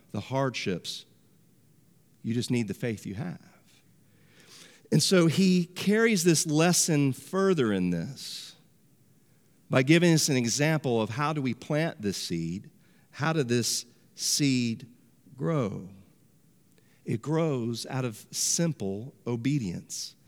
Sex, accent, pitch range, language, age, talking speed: male, American, 150-200 Hz, English, 50-69, 120 wpm